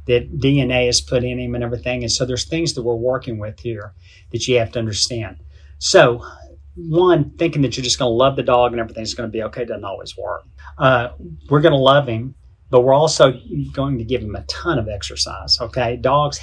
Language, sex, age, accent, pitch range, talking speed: English, male, 40-59, American, 115-130 Hz, 210 wpm